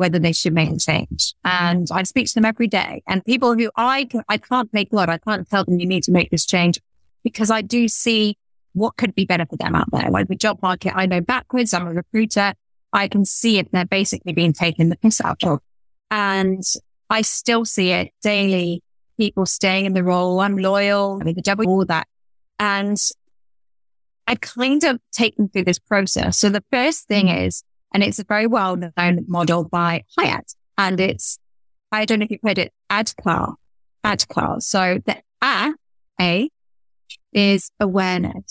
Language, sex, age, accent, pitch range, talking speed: English, female, 20-39, British, 175-220 Hz, 195 wpm